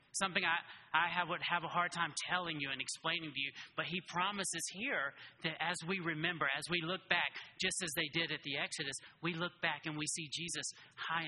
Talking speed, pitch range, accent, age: 225 wpm, 140-175 Hz, American, 30-49